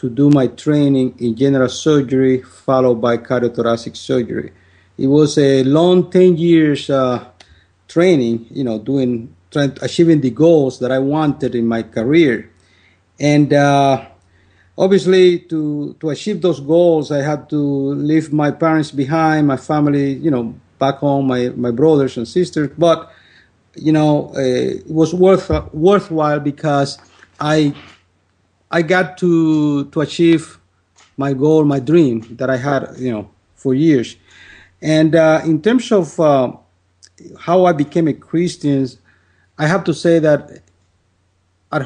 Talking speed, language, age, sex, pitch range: 145 wpm, English, 50-69, male, 120-155 Hz